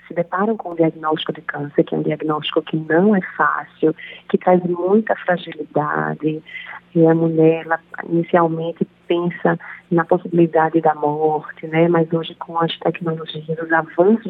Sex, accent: female, Brazilian